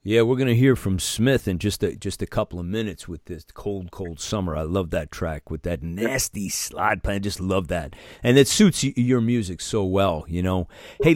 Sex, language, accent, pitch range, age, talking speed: male, English, American, 90-115 Hz, 40-59, 220 wpm